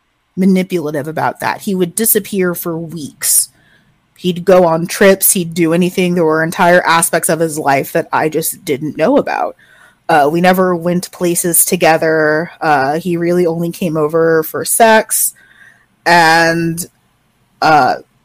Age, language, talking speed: 20-39, English, 145 wpm